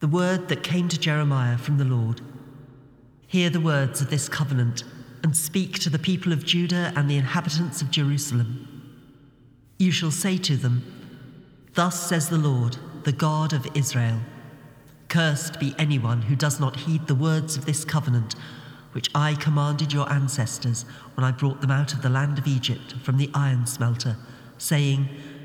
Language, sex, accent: English, male, British